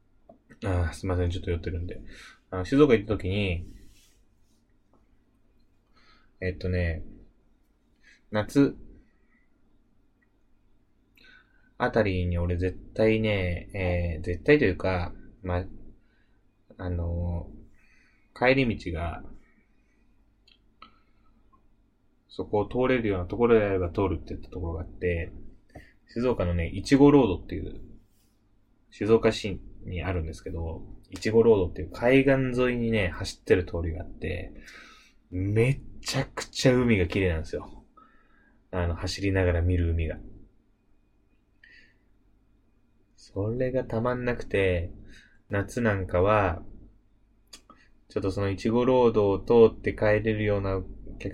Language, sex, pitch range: Japanese, male, 90-110 Hz